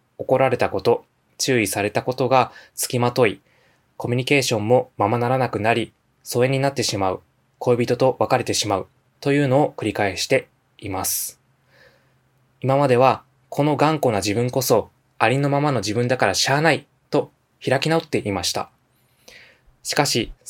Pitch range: 110-130 Hz